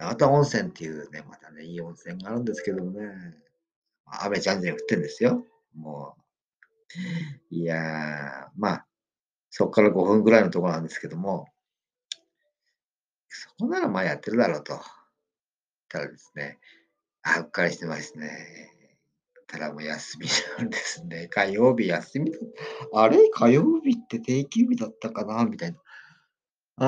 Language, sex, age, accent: Japanese, male, 50-69, native